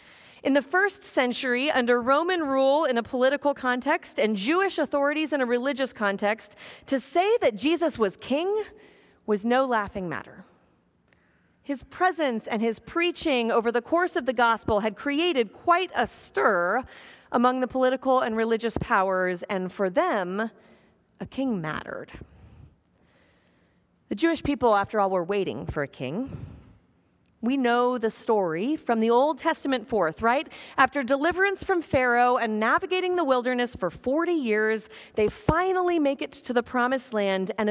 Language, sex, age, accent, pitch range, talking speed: English, female, 40-59, American, 220-290 Hz, 155 wpm